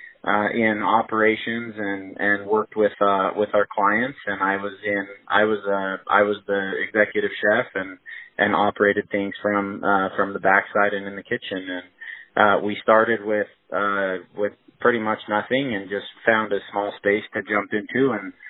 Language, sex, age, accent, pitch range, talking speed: English, male, 20-39, American, 100-110 Hz, 180 wpm